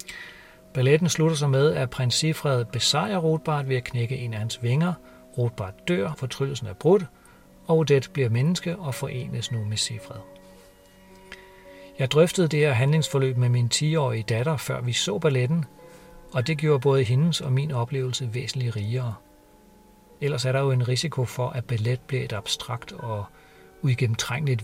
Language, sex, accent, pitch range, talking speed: Danish, male, native, 115-145 Hz, 165 wpm